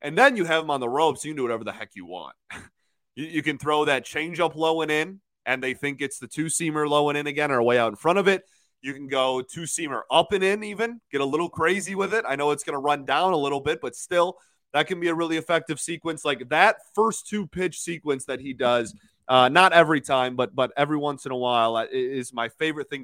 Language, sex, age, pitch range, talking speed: English, male, 20-39, 130-165 Hz, 260 wpm